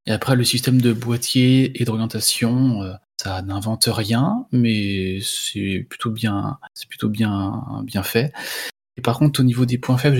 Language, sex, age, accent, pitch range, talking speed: French, male, 20-39, French, 100-120 Hz, 165 wpm